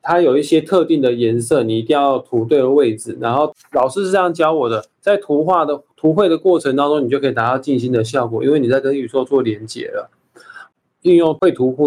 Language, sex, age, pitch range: Chinese, male, 20-39, 120-160 Hz